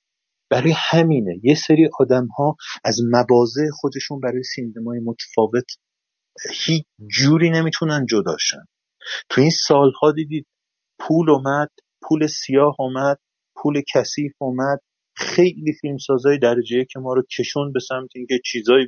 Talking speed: 130 wpm